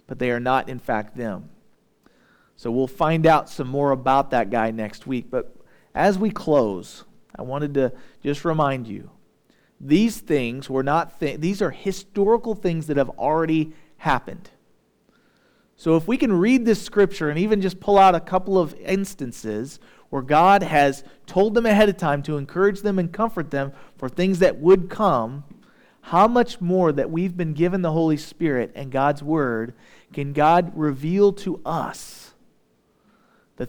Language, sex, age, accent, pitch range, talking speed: English, male, 40-59, American, 140-195 Hz, 170 wpm